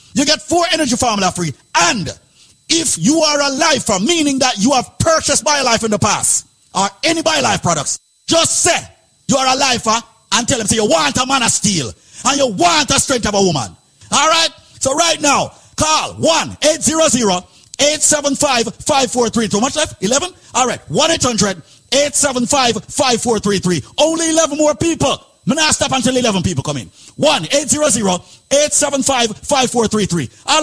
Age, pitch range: 50-69, 210-290 Hz